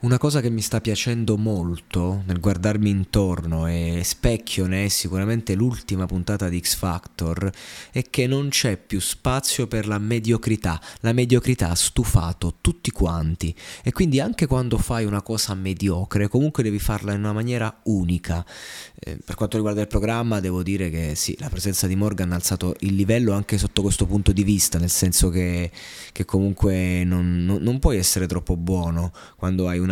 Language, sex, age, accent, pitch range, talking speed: Italian, male, 20-39, native, 90-115 Hz, 175 wpm